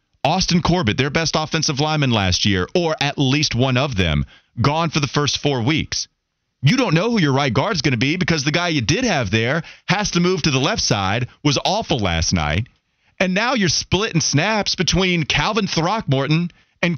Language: English